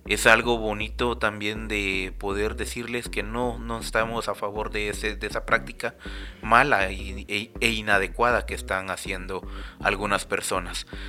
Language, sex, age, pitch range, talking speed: Spanish, male, 30-49, 100-115 Hz, 135 wpm